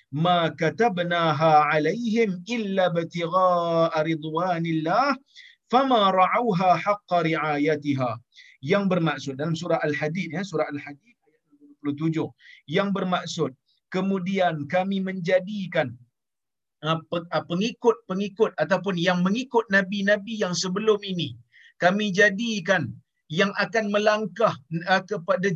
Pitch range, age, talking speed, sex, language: 170-215 Hz, 50-69, 80 wpm, male, Malayalam